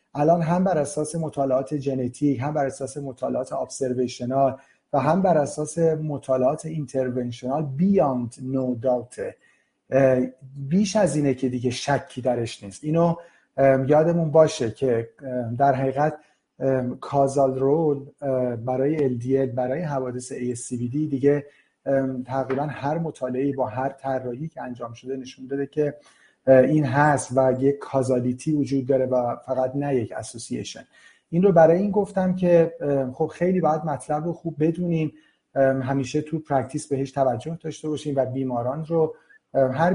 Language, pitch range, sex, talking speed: Persian, 130-155 Hz, male, 135 wpm